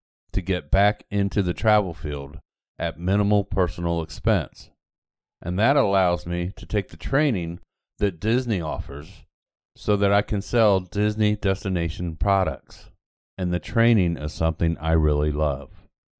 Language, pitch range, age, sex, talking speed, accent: English, 85-110 Hz, 50-69, male, 140 wpm, American